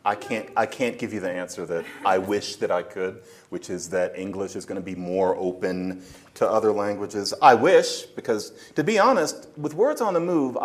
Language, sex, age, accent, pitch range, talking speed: English, male, 40-59, American, 105-165 Hz, 215 wpm